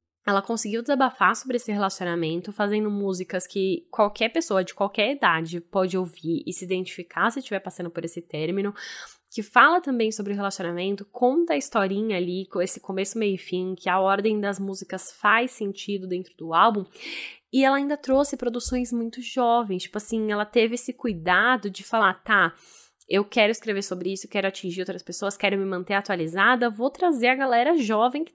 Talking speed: 180 wpm